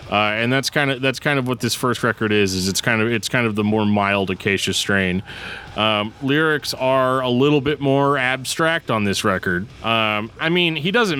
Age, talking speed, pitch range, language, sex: 30-49, 220 wpm, 110-145 Hz, English, male